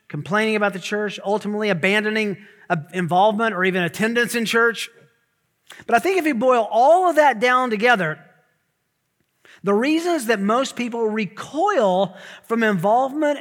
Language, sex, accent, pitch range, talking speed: English, male, American, 180-235 Hz, 140 wpm